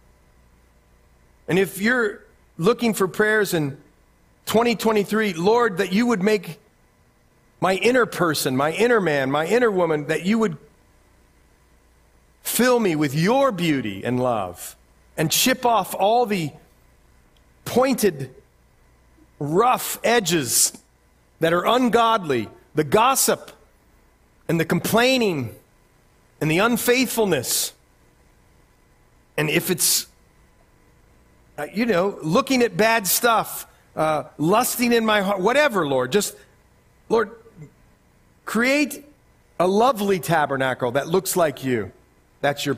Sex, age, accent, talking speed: male, 40-59, American, 110 wpm